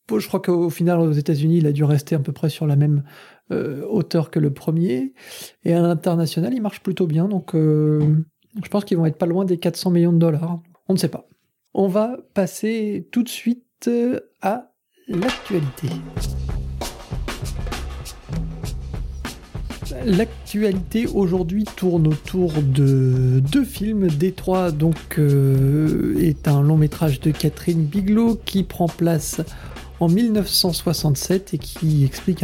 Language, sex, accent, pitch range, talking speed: French, male, French, 150-190 Hz, 145 wpm